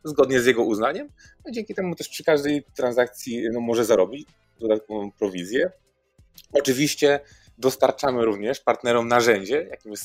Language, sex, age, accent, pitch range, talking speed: Polish, male, 20-39, native, 105-130 Hz, 130 wpm